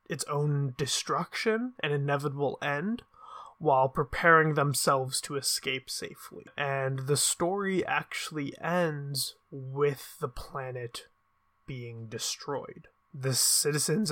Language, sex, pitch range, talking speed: English, male, 130-160 Hz, 100 wpm